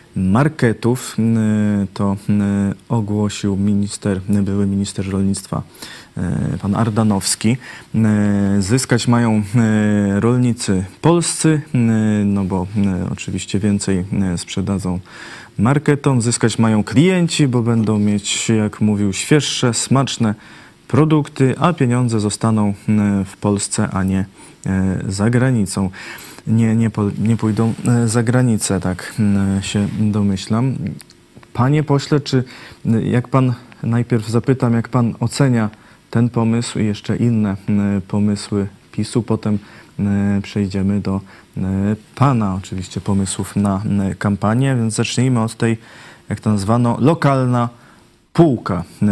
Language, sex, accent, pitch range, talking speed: Polish, male, native, 100-120 Hz, 100 wpm